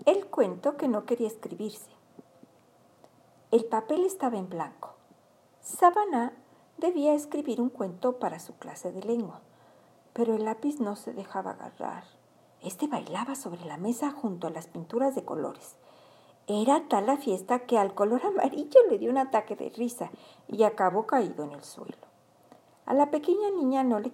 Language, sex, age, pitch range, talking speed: Spanish, female, 50-69, 210-295 Hz, 160 wpm